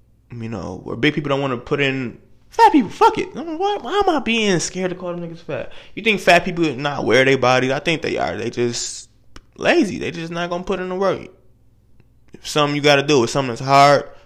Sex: male